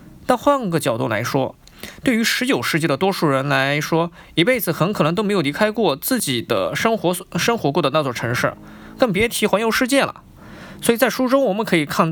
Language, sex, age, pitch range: Chinese, male, 20-39, 165-235 Hz